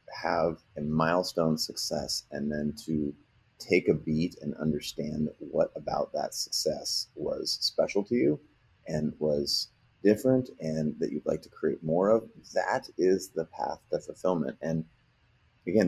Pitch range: 80-90 Hz